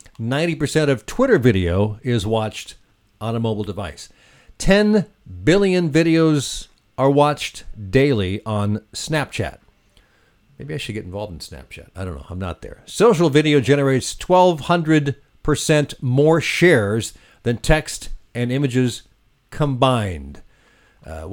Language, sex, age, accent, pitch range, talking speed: English, male, 50-69, American, 105-150 Hz, 120 wpm